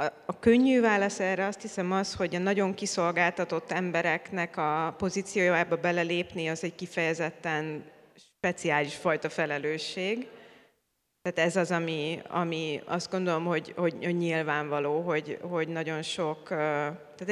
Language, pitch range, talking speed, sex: Hungarian, 155-175 Hz, 125 wpm, female